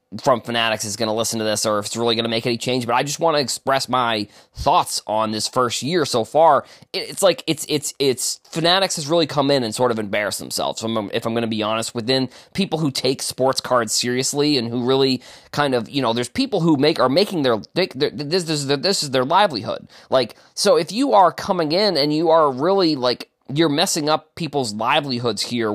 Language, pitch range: English, 115-150 Hz